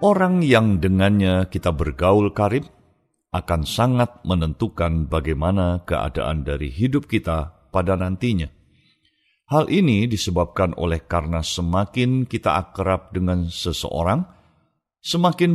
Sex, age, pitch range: male, 50-69, 85-115 Hz